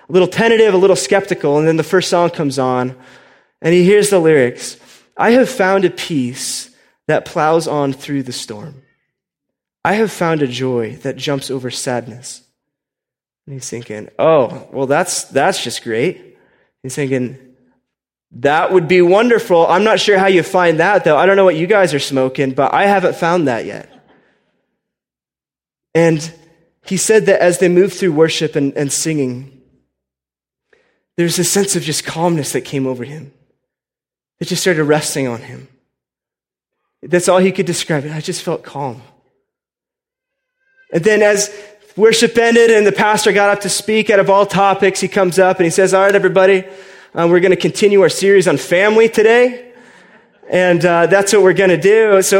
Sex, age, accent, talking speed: male, 20-39, American, 180 wpm